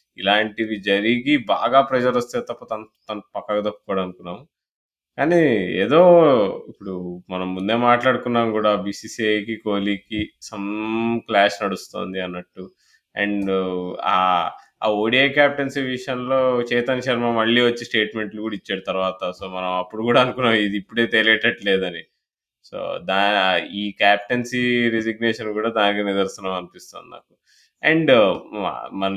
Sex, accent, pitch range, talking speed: male, native, 105-130 Hz, 115 wpm